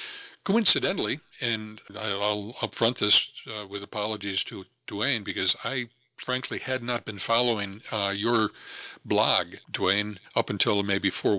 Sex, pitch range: male, 100-120 Hz